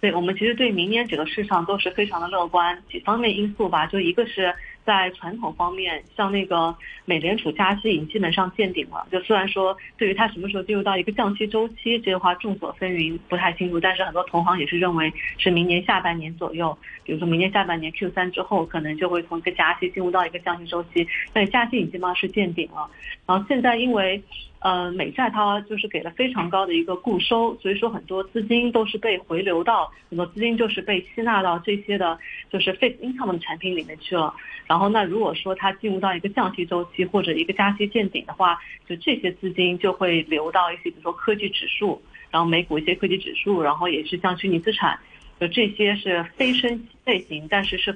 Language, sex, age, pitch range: Chinese, female, 30-49, 175-210 Hz